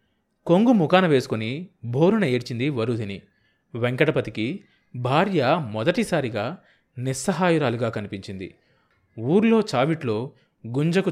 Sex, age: male, 30-49